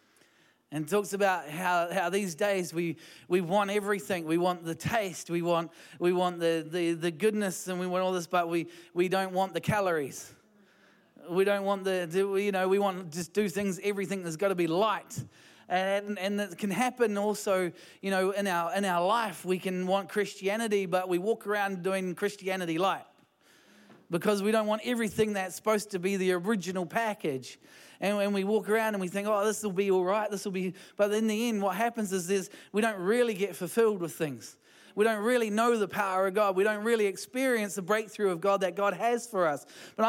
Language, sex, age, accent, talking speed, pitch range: English, male, 30-49, Australian, 215 wpm, 185-225 Hz